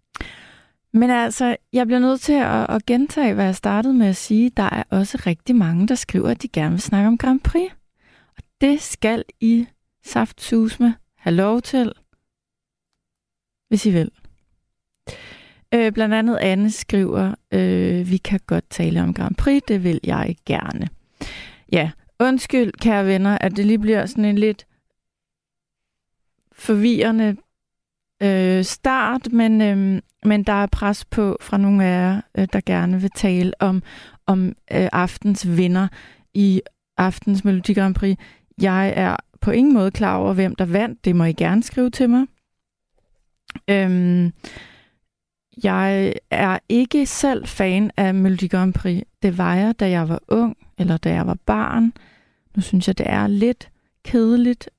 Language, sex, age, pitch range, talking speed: Danish, female, 30-49, 185-230 Hz, 150 wpm